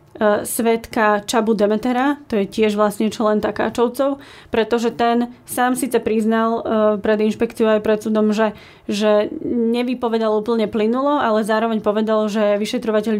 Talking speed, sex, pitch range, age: 135 wpm, female, 210-235 Hz, 30-49